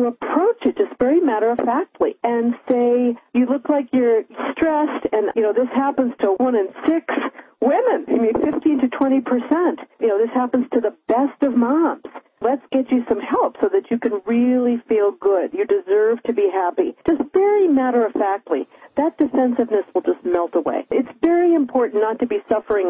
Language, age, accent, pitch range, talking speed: English, 50-69, American, 230-295 Hz, 185 wpm